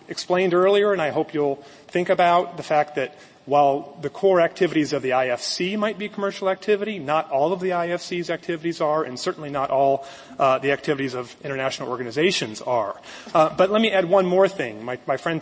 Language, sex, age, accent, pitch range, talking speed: English, male, 30-49, American, 135-185 Hz, 200 wpm